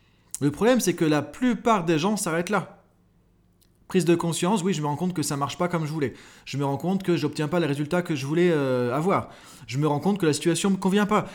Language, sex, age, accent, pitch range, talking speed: French, male, 30-49, French, 145-210 Hz, 270 wpm